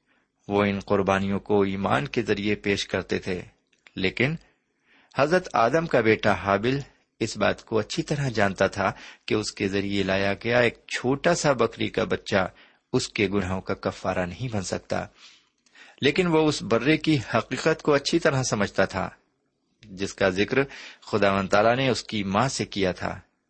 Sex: male